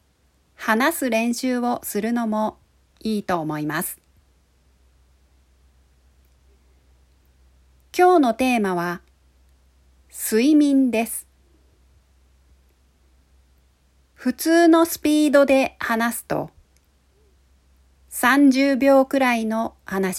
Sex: female